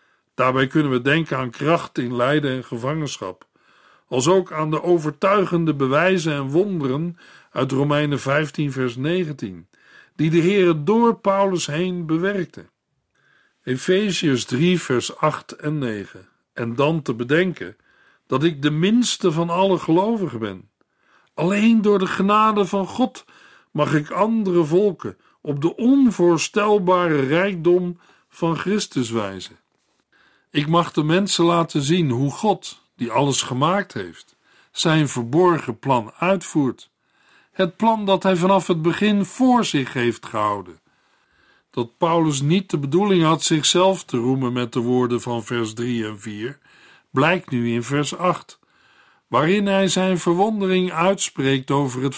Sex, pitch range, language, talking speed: male, 135-185 Hz, Dutch, 140 wpm